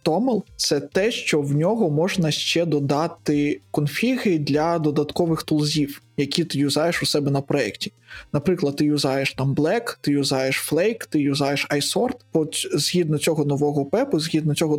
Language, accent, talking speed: Ukrainian, native, 160 wpm